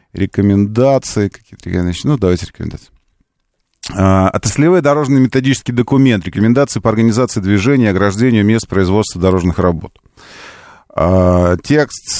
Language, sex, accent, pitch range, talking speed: Russian, male, native, 95-130 Hz, 120 wpm